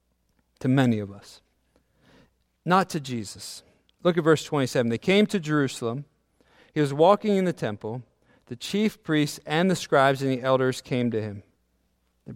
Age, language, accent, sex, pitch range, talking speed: 40-59, English, American, male, 130-190 Hz, 165 wpm